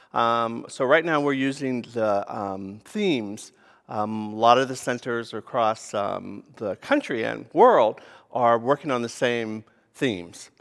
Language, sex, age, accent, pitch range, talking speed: English, male, 50-69, American, 115-150 Hz, 155 wpm